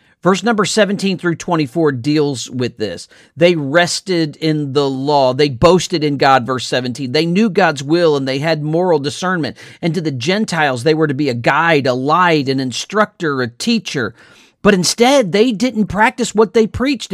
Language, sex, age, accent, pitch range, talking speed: English, male, 40-59, American, 155-220 Hz, 180 wpm